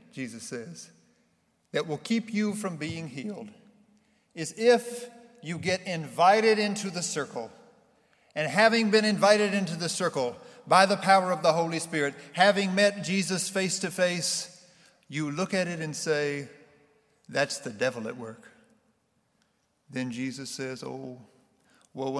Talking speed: 145 wpm